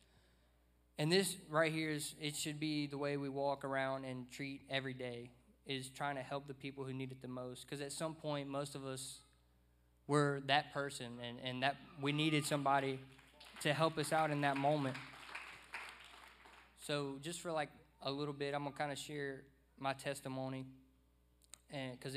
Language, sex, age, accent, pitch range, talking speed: English, male, 20-39, American, 125-145 Hz, 180 wpm